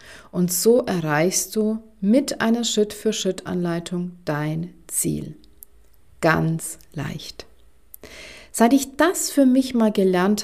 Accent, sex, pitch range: German, female, 175-235 Hz